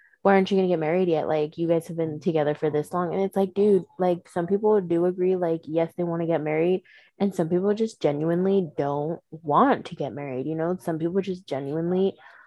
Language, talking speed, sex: English, 235 wpm, female